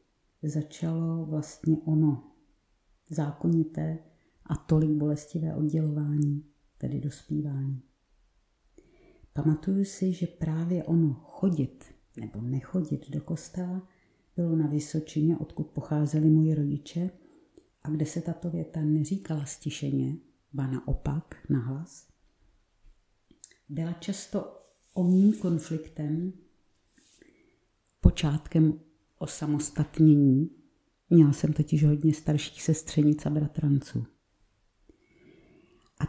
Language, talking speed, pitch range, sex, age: Czech, 90 wpm, 145-165 Hz, female, 50-69